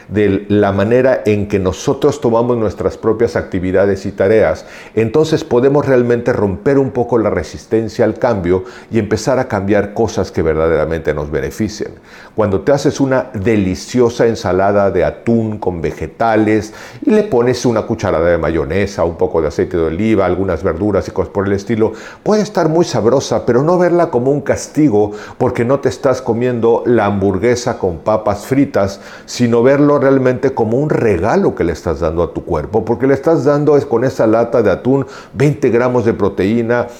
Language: Spanish